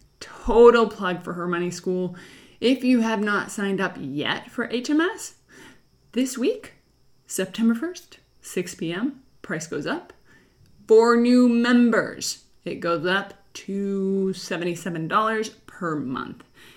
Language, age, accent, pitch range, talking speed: English, 20-39, American, 175-245 Hz, 125 wpm